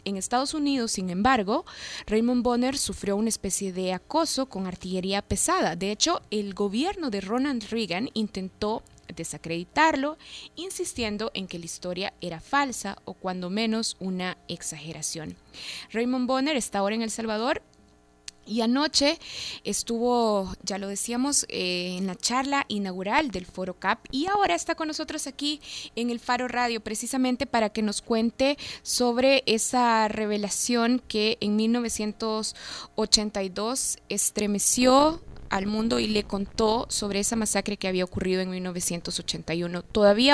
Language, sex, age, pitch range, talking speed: Spanish, female, 20-39, 195-250 Hz, 140 wpm